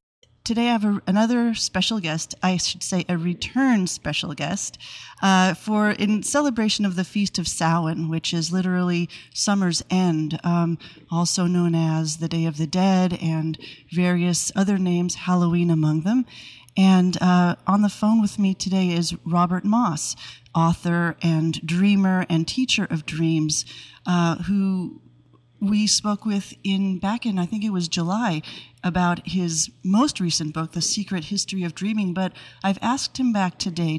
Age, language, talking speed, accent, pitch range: 30-49, English, 160 wpm, American, 165-200 Hz